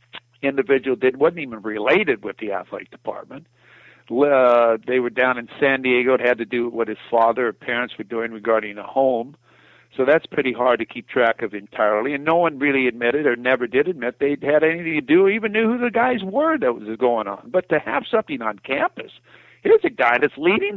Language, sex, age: English, male, 60-79